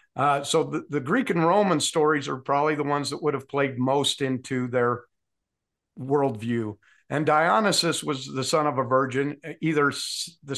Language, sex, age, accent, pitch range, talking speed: English, male, 50-69, American, 130-160 Hz, 170 wpm